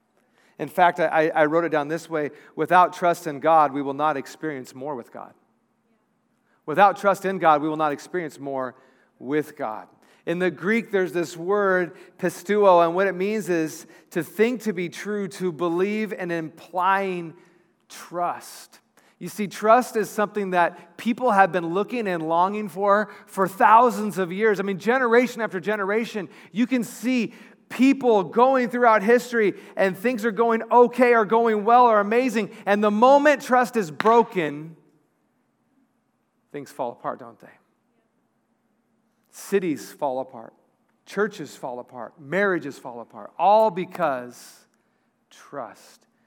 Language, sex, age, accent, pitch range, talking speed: English, male, 40-59, American, 165-230 Hz, 150 wpm